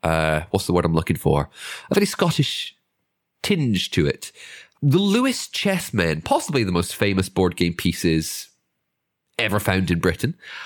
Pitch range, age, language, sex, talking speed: 95-140 Hz, 30-49, English, male, 150 wpm